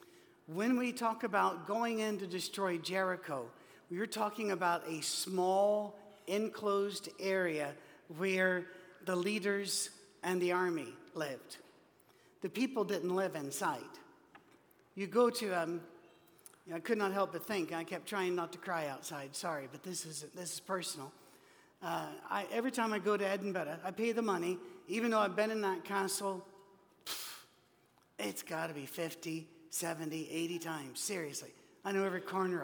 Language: English